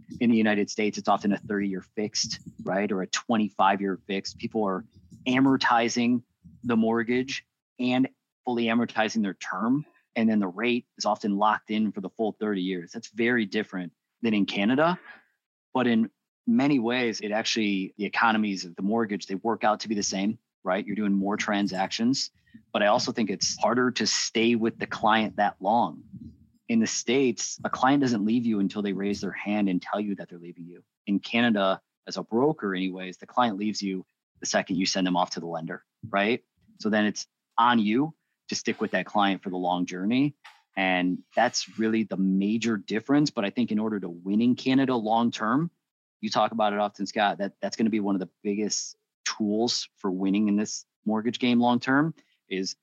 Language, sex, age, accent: English, male, 30-49, American